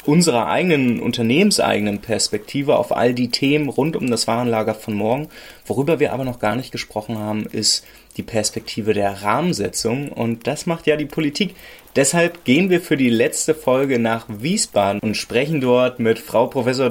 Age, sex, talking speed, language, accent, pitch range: 20-39, male, 170 wpm, German, German, 115-145 Hz